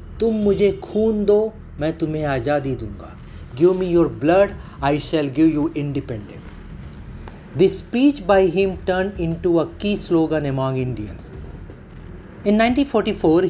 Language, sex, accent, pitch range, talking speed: Hindi, male, native, 130-170 Hz, 145 wpm